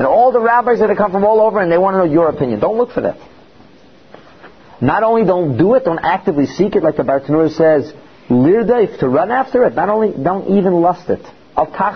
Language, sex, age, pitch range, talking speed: English, male, 40-59, 150-235 Hz, 225 wpm